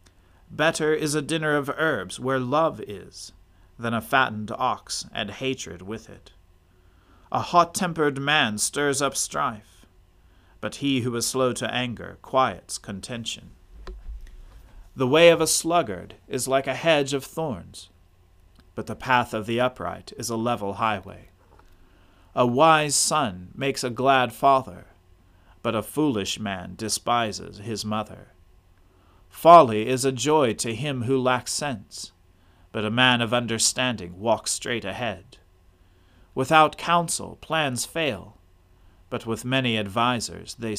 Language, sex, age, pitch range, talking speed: English, male, 40-59, 90-130 Hz, 140 wpm